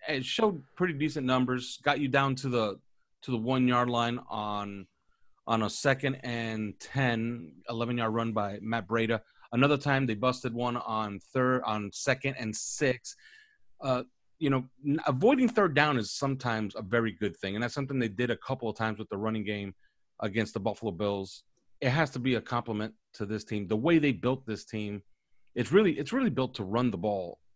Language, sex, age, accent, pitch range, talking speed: English, male, 30-49, American, 105-135 Hz, 200 wpm